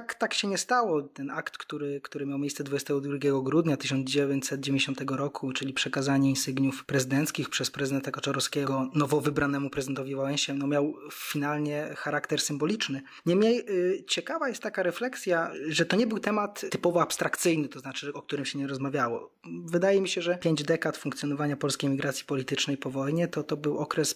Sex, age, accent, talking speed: male, 20-39, native, 160 wpm